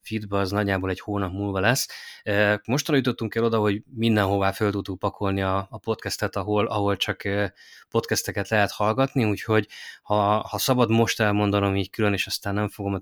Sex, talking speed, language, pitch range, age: male, 170 wpm, Hungarian, 95-110 Hz, 20-39